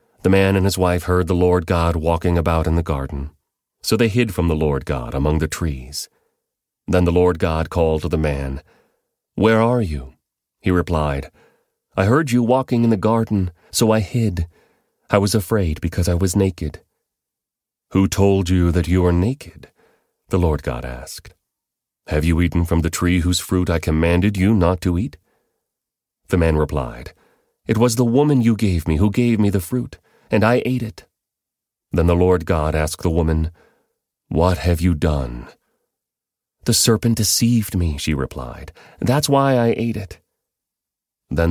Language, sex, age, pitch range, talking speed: English, male, 30-49, 80-105 Hz, 175 wpm